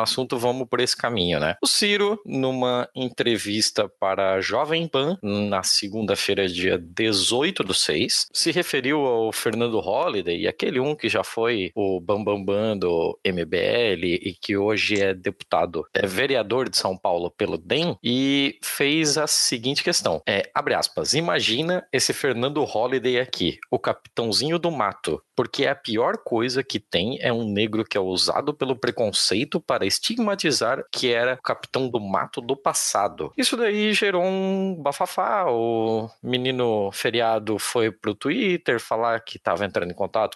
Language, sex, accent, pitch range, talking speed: Portuguese, male, Brazilian, 100-145 Hz, 160 wpm